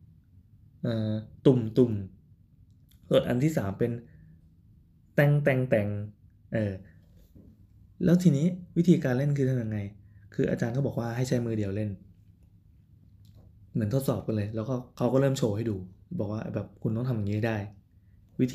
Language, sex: Thai, male